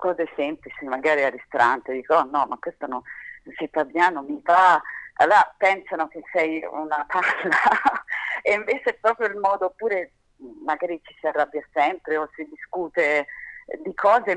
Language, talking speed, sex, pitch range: Italian, 165 wpm, female, 135-190 Hz